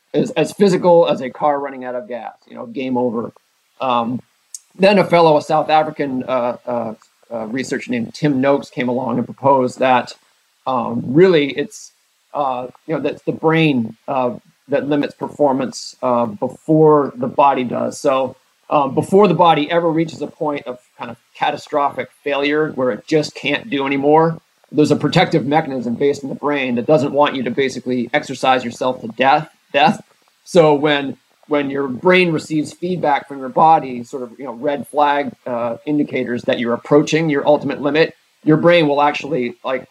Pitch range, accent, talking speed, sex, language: 125-155 Hz, American, 180 wpm, male, English